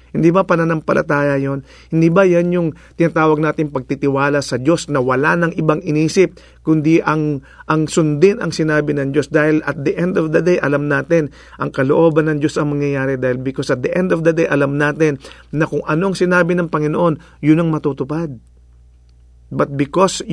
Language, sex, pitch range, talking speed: English, male, 145-185 Hz, 185 wpm